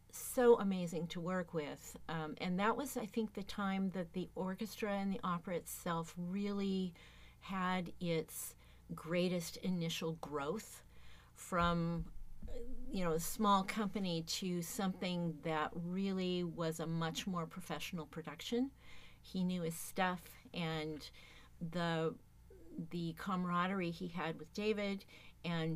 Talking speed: 130 wpm